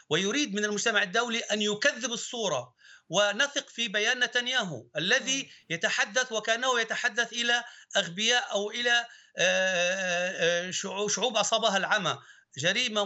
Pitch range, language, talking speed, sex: 205-245 Hz, Arabic, 105 wpm, male